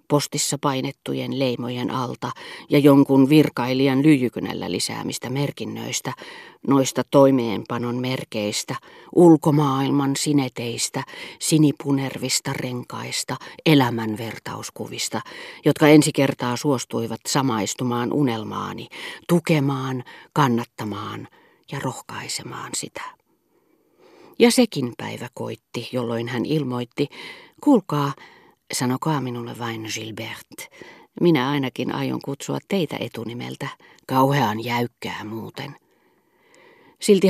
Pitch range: 120-155 Hz